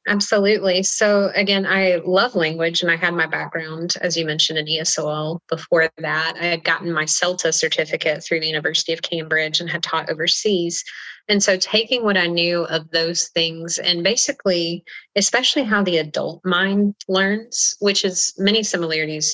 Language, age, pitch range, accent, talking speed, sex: English, 30-49, 155-185 Hz, American, 170 wpm, female